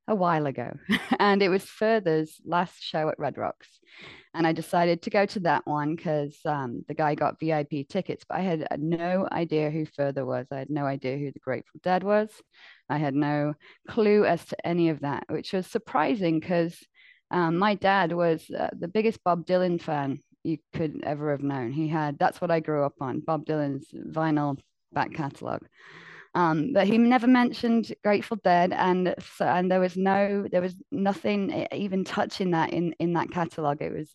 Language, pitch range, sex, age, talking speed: English, 150-185 Hz, female, 20-39, 190 wpm